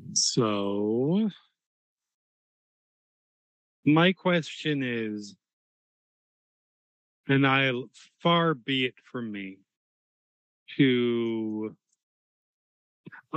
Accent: American